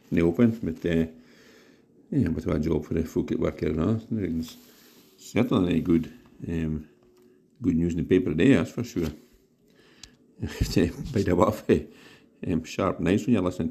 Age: 60-79